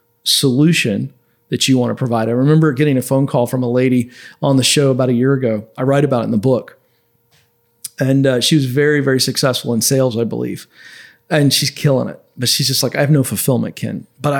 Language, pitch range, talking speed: English, 115-145 Hz, 225 wpm